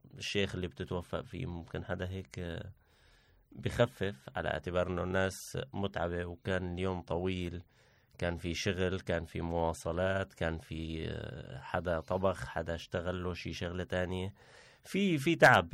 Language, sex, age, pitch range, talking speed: Arabic, male, 30-49, 90-115 Hz, 135 wpm